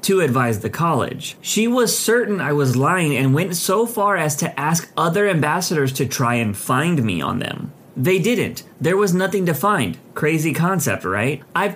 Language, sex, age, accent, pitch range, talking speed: English, male, 30-49, American, 125-185 Hz, 190 wpm